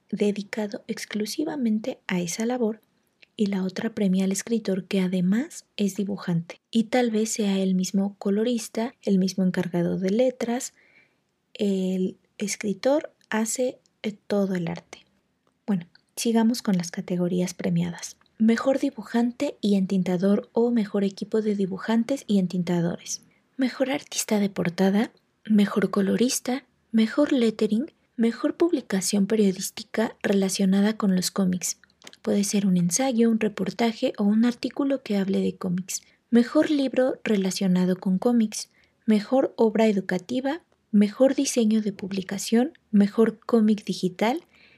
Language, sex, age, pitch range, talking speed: Spanish, female, 20-39, 195-235 Hz, 125 wpm